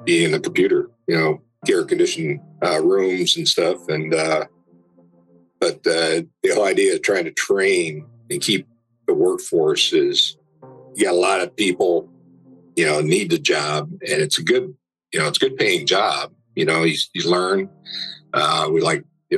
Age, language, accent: 50-69, English, American